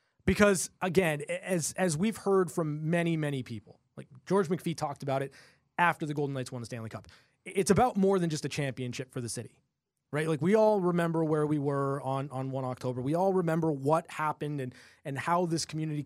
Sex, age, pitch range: male, 20-39, 140-175 Hz